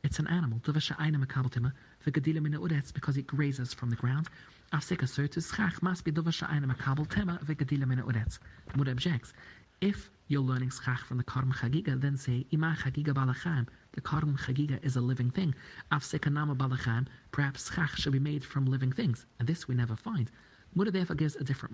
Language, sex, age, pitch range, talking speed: English, male, 40-59, 125-160 Hz, 180 wpm